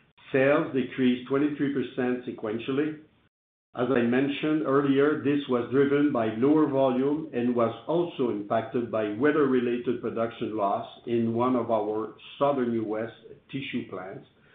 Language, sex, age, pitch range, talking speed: English, male, 60-79, 120-140 Hz, 125 wpm